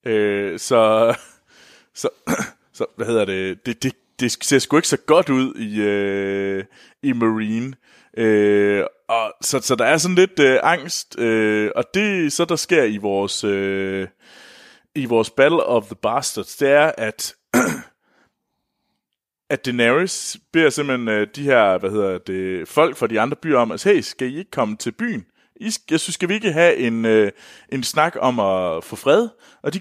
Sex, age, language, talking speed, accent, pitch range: male, 30-49, Danish, 175 wpm, native, 105-140 Hz